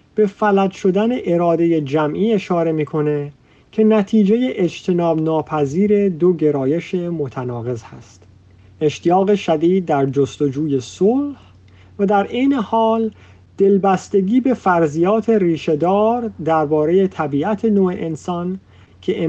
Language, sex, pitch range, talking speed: Persian, male, 145-195 Hz, 100 wpm